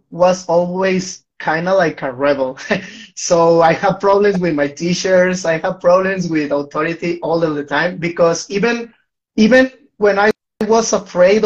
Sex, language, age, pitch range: male, English, 30-49, 165-200 Hz